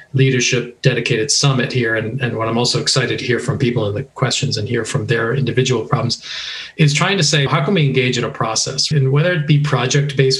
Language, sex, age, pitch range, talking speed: English, male, 40-59, 120-140 Hz, 230 wpm